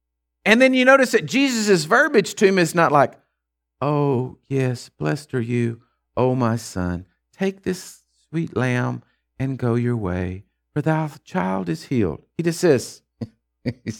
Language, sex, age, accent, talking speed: English, male, 50-69, American, 160 wpm